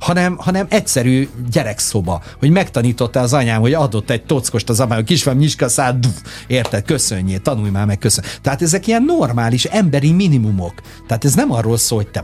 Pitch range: 110-155 Hz